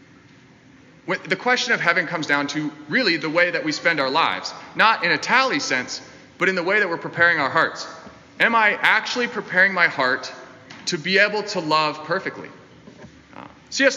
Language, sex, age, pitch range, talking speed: English, male, 30-49, 155-210 Hz, 180 wpm